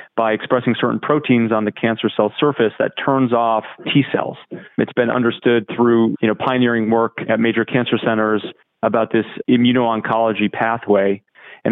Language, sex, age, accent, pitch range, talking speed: English, male, 30-49, American, 110-120 Hz, 150 wpm